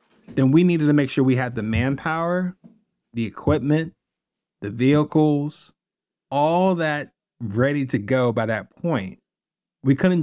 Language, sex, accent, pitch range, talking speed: English, male, American, 120-170 Hz, 140 wpm